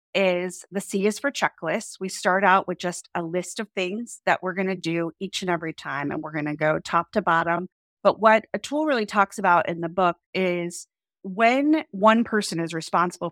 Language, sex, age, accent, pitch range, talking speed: English, female, 30-49, American, 170-210 Hz, 215 wpm